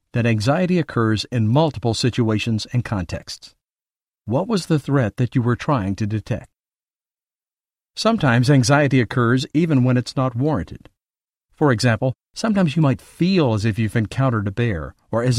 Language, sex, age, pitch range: English, male, 50-69, 110-140 Hz